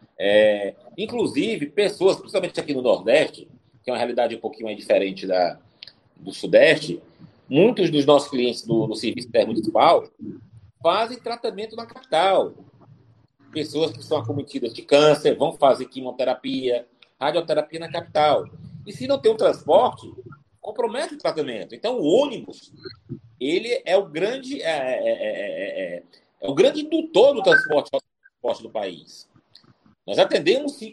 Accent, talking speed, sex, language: Brazilian, 140 wpm, male, Portuguese